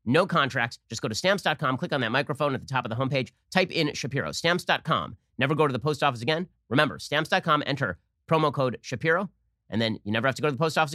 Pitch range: 120-165 Hz